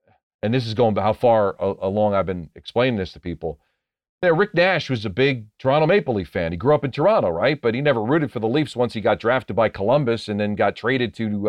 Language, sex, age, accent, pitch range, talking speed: English, male, 40-59, American, 110-145 Hz, 250 wpm